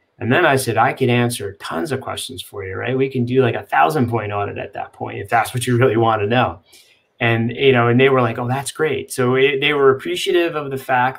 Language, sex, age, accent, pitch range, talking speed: English, male, 30-49, American, 115-140 Hz, 270 wpm